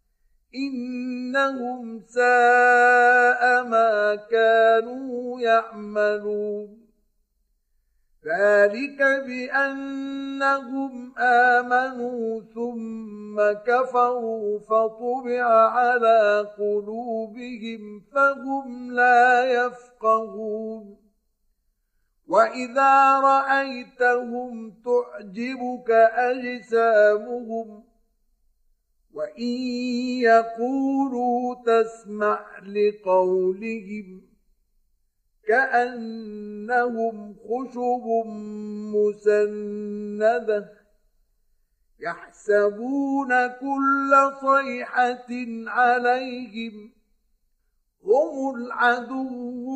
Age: 50-69